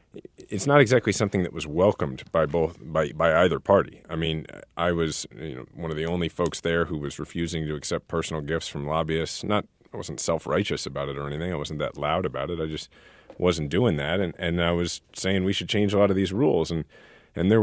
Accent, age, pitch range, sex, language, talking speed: American, 30-49, 80-95 Hz, male, English, 235 wpm